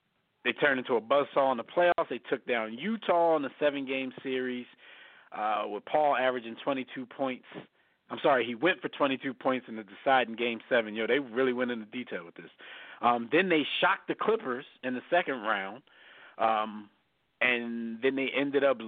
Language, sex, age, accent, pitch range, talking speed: English, male, 40-59, American, 115-150 Hz, 185 wpm